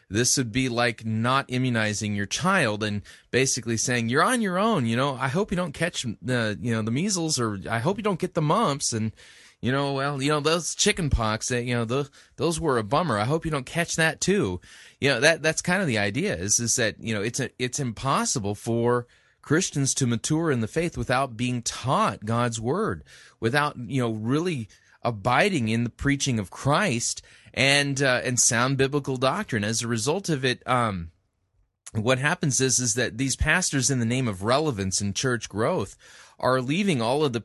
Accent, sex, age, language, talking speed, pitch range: American, male, 30-49, English, 210 wpm, 115-150 Hz